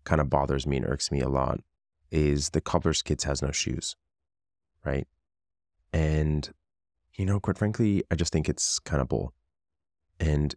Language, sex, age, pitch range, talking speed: English, male, 20-39, 70-85 Hz, 170 wpm